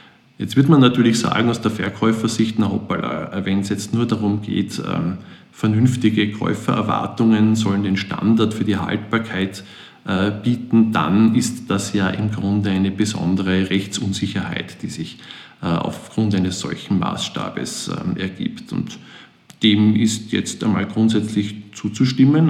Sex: male